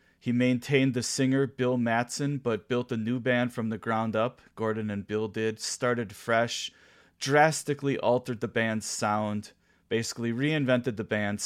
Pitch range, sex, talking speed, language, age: 100-125 Hz, male, 155 wpm, English, 30-49